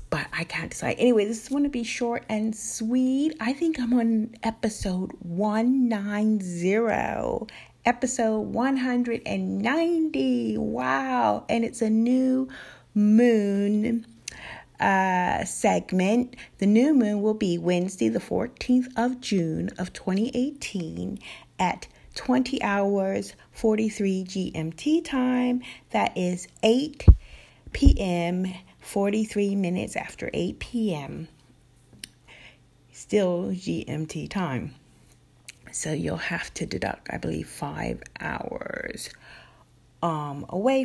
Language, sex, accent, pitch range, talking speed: English, female, American, 175-240 Hz, 105 wpm